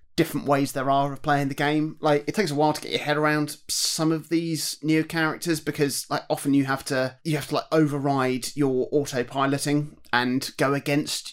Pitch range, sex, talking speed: 130-150 Hz, male, 205 wpm